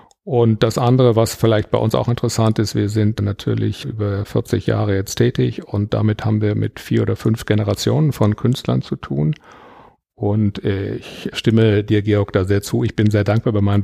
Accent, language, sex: German, German, male